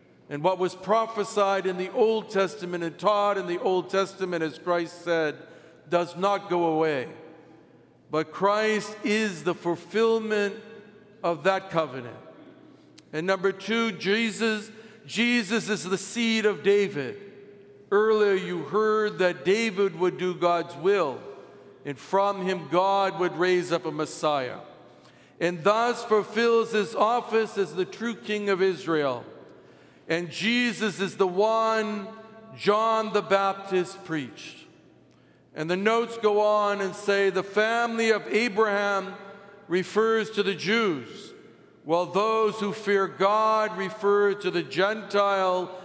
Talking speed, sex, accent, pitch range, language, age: 130 wpm, male, American, 180-215 Hz, English, 60-79